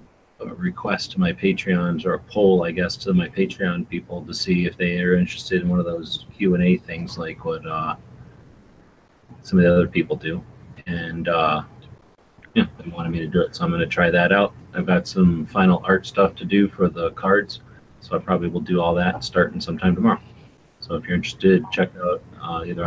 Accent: American